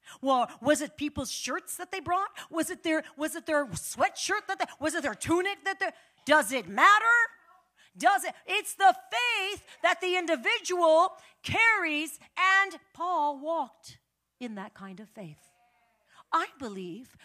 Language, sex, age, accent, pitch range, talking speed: English, female, 40-59, American, 235-330 Hz, 155 wpm